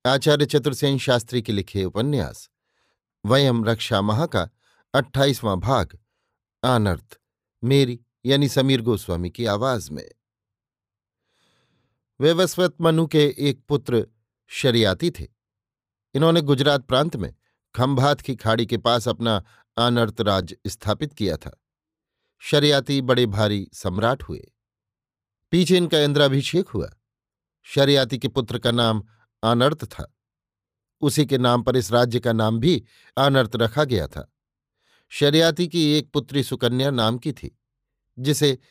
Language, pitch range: Hindi, 110-145 Hz